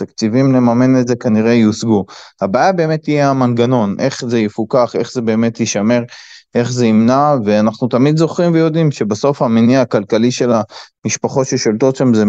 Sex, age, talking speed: male, 20-39, 155 wpm